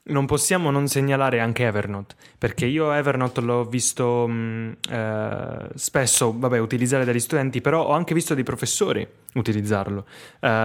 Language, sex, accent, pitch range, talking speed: Italian, male, native, 115-140 Hz, 135 wpm